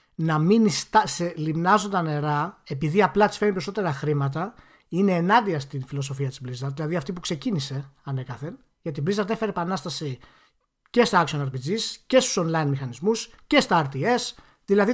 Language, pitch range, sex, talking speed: Greek, 155-220 Hz, male, 150 wpm